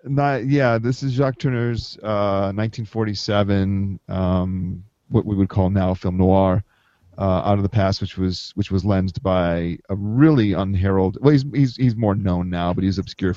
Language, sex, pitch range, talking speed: English, male, 95-110 Hz, 185 wpm